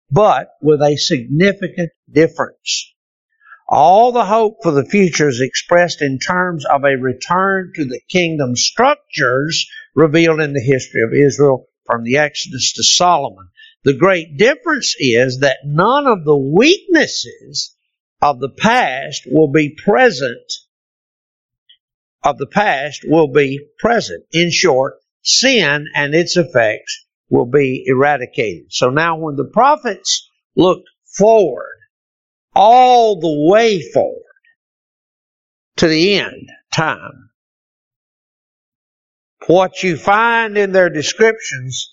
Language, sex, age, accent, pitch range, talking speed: English, male, 60-79, American, 140-220 Hz, 120 wpm